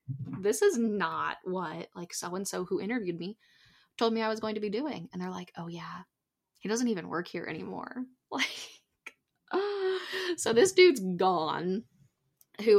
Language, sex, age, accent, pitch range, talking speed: English, female, 10-29, American, 175-230 Hz, 160 wpm